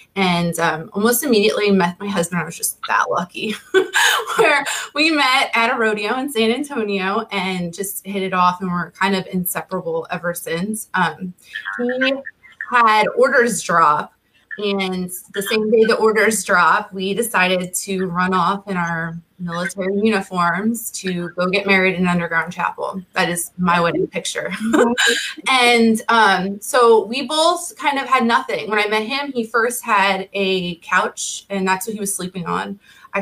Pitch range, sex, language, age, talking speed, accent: 185-230 Hz, female, English, 20-39, 170 wpm, American